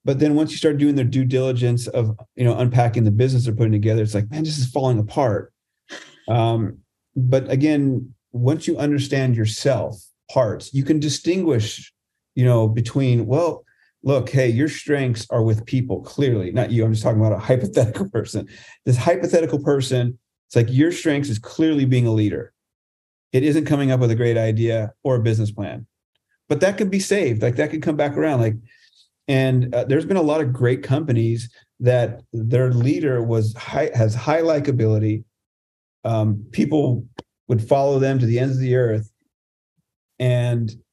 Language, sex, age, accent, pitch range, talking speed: English, male, 40-59, American, 115-140 Hz, 180 wpm